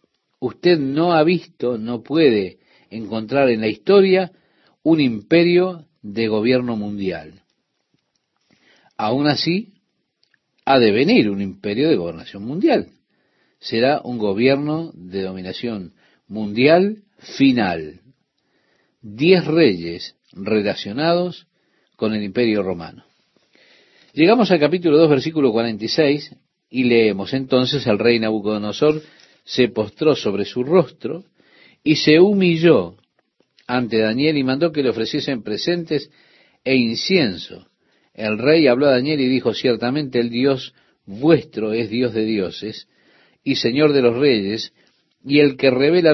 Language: Spanish